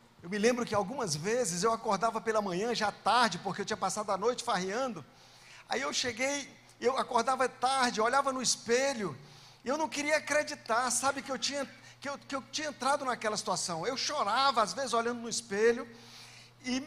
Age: 50-69